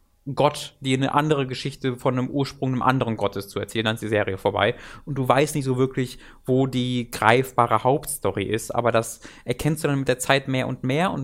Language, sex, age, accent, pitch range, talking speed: German, male, 20-39, German, 120-140 Hz, 220 wpm